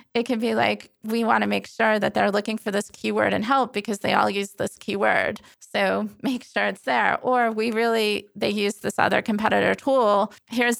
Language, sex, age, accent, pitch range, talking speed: English, female, 30-49, American, 195-230 Hz, 210 wpm